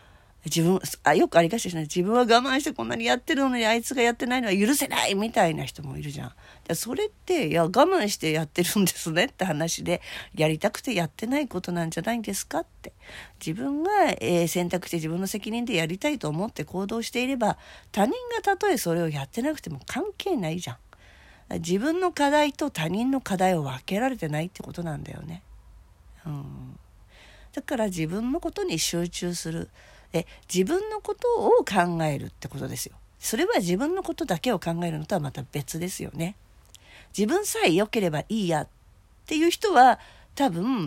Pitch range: 160-270 Hz